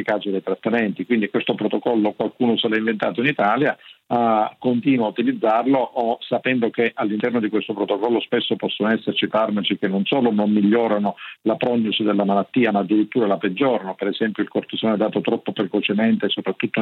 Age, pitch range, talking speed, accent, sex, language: 50-69, 105-115 Hz, 160 wpm, native, male, Italian